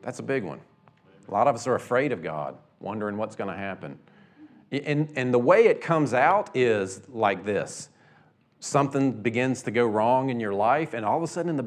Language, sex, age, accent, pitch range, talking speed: English, male, 40-59, American, 120-170 Hz, 215 wpm